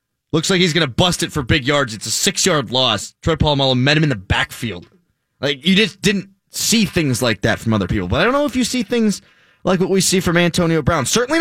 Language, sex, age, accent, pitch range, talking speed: English, male, 20-39, American, 125-175 Hz, 250 wpm